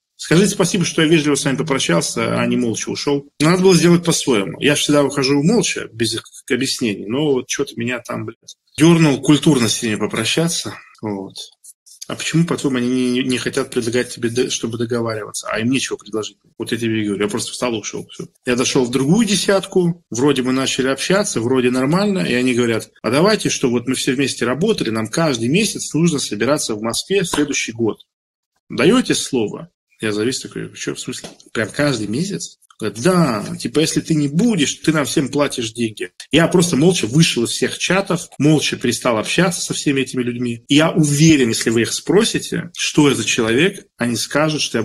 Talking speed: 190 wpm